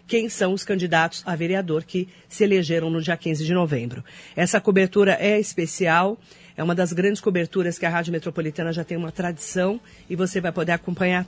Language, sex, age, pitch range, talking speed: Portuguese, female, 40-59, 165-200 Hz, 190 wpm